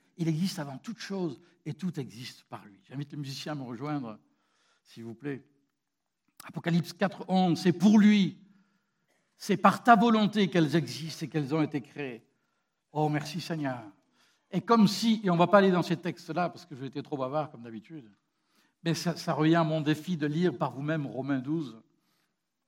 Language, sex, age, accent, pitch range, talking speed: French, male, 60-79, French, 155-205 Hz, 190 wpm